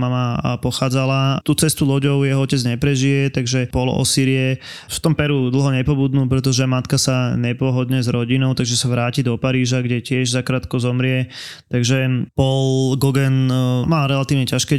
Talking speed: 150 wpm